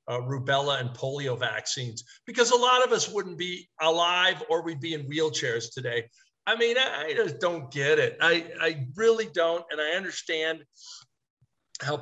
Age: 50-69